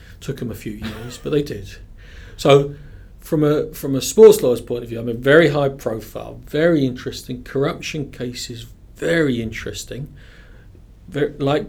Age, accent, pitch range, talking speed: 40-59, British, 115-140 Hz, 165 wpm